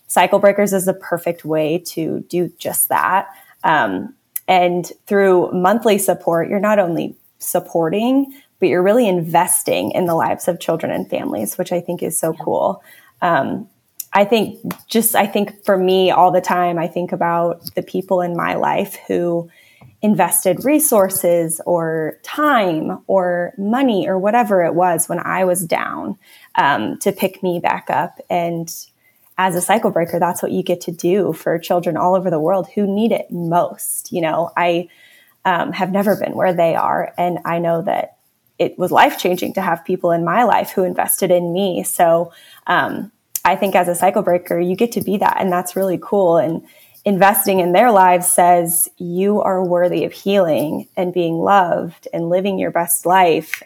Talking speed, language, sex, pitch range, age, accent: 180 wpm, English, female, 175-200 Hz, 20-39, American